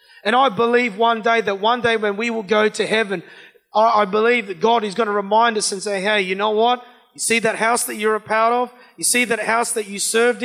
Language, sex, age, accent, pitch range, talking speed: English, male, 30-49, Australian, 185-230 Hz, 260 wpm